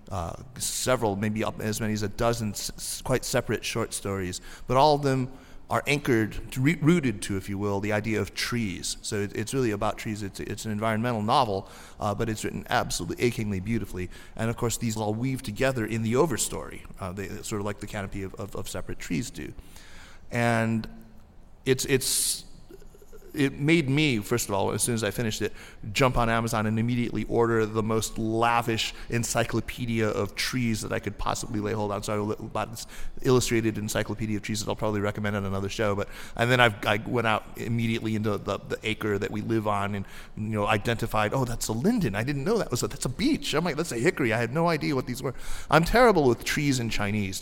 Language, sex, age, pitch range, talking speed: English, male, 30-49, 105-120 Hz, 220 wpm